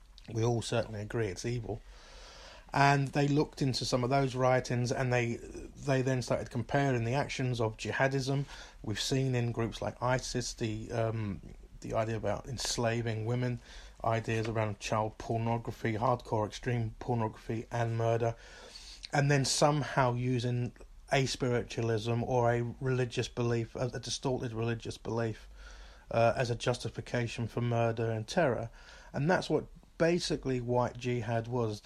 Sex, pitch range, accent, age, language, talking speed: male, 115-130 Hz, British, 30-49, English, 140 wpm